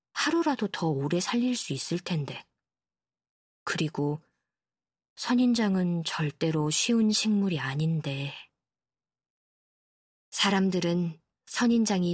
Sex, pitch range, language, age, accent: female, 160-210 Hz, Korean, 20-39, native